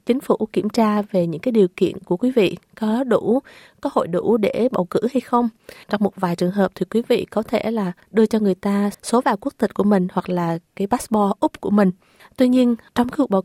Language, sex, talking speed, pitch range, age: Vietnamese, female, 245 wpm, 195-240 Hz, 20-39